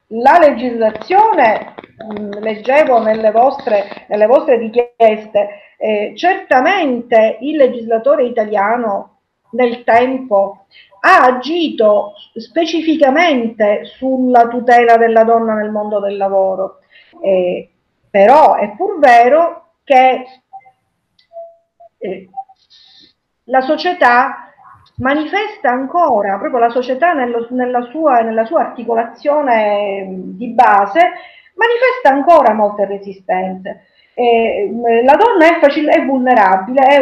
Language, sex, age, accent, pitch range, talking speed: Italian, female, 50-69, native, 215-280 Hz, 90 wpm